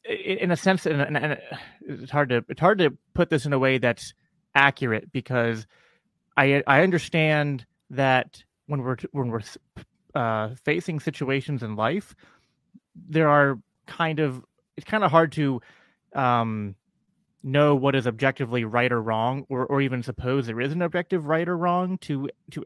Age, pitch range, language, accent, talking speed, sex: 30-49, 120-160 Hz, English, American, 160 wpm, male